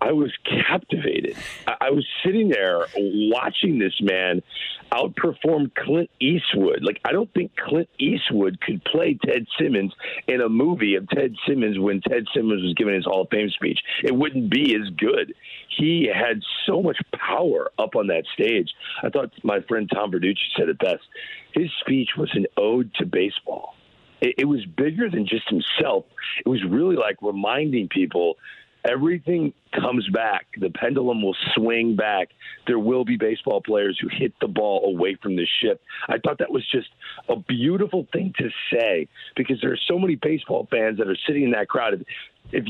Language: English